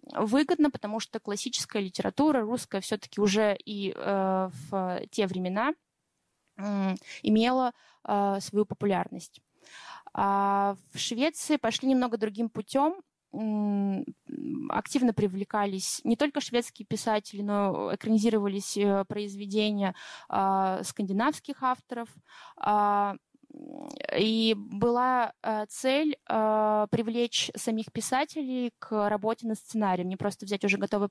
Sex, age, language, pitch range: female, 20-39, Russian, 200-235 Hz